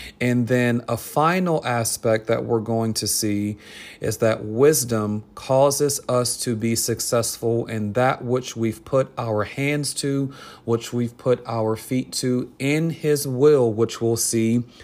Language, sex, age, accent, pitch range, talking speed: English, male, 40-59, American, 110-130 Hz, 155 wpm